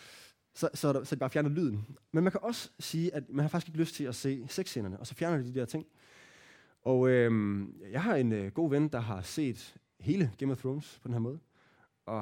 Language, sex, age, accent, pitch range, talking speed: Danish, male, 20-39, native, 110-150 Hz, 240 wpm